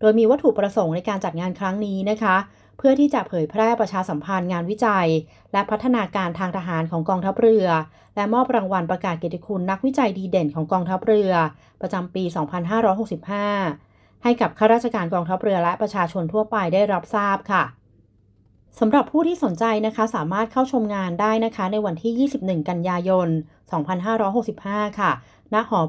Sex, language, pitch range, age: female, Thai, 170-215 Hz, 30-49